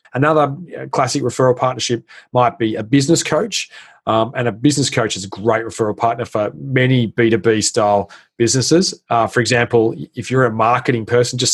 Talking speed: 170 wpm